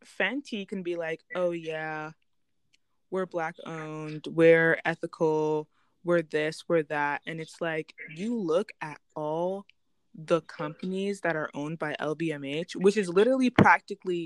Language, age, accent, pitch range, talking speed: English, 20-39, American, 150-175 Hz, 140 wpm